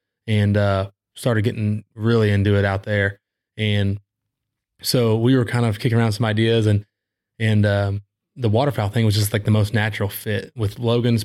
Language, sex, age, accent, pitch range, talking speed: English, male, 20-39, American, 100-115 Hz, 180 wpm